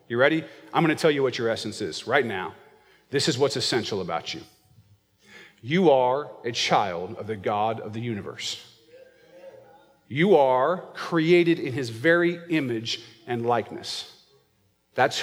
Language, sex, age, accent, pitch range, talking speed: English, male, 40-59, American, 140-210 Hz, 155 wpm